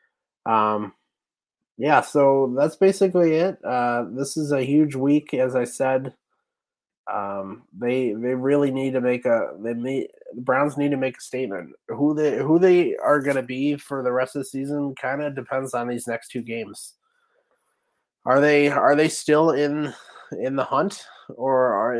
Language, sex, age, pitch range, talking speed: English, male, 20-39, 120-145 Hz, 175 wpm